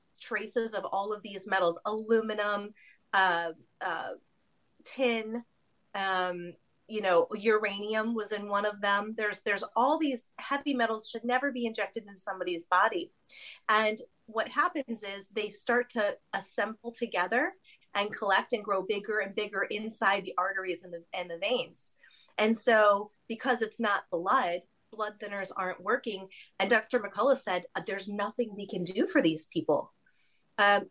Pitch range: 195-235 Hz